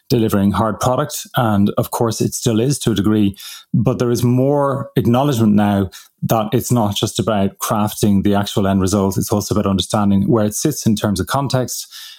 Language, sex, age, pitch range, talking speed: English, male, 30-49, 105-130 Hz, 190 wpm